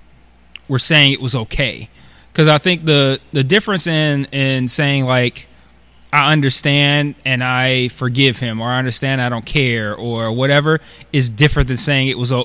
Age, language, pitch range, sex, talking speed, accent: 20-39, English, 125-150 Hz, male, 170 wpm, American